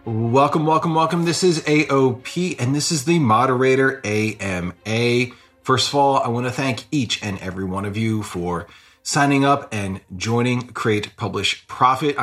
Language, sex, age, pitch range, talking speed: English, male, 30-49, 105-140 Hz, 160 wpm